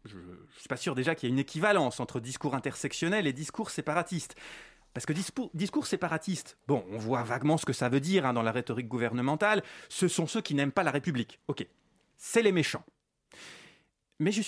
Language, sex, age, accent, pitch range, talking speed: French, male, 30-49, French, 125-195 Hz, 210 wpm